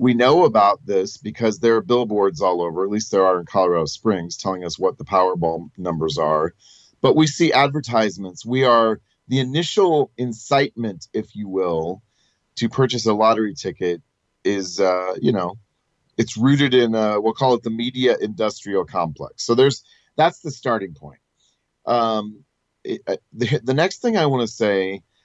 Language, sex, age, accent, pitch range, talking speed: English, male, 30-49, American, 105-130 Hz, 170 wpm